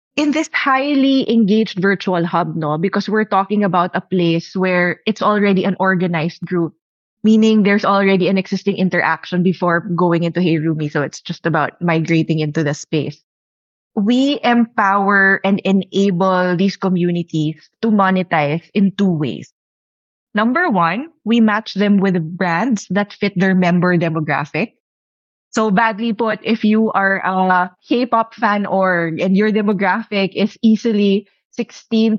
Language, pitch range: Filipino, 175-215 Hz